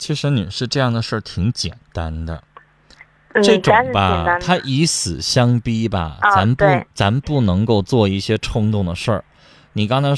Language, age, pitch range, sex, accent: Chinese, 20-39, 105-165 Hz, male, native